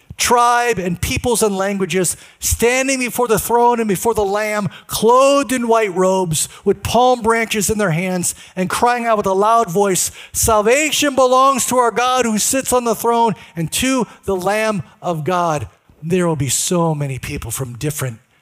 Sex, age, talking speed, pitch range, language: male, 50-69, 175 wpm, 135-215 Hz, English